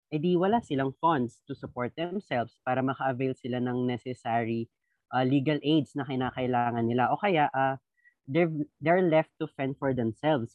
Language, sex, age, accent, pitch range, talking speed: Filipino, female, 20-39, native, 130-155 Hz, 155 wpm